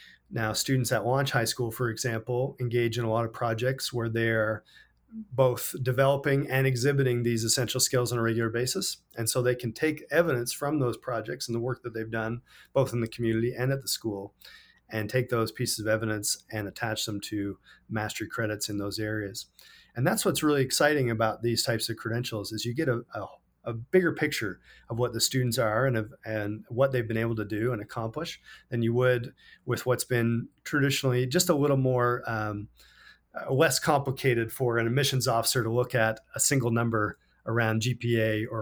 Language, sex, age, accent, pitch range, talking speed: English, male, 40-59, American, 110-130 Hz, 195 wpm